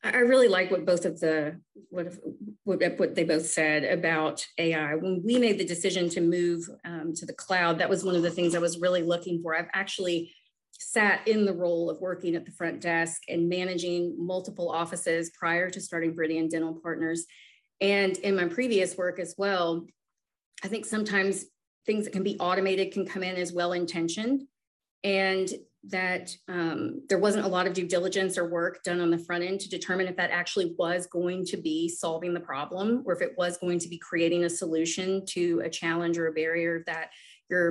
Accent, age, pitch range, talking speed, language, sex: American, 40-59, 170-190 Hz, 200 wpm, English, female